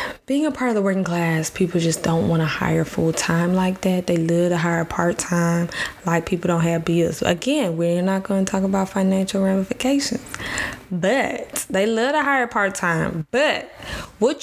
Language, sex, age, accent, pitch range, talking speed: English, female, 10-29, American, 175-210 Hz, 180 wpm